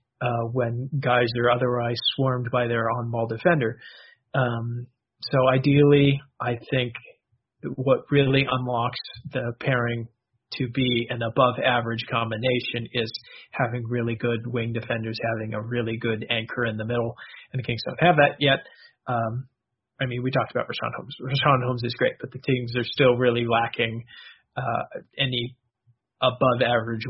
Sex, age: male, 40-59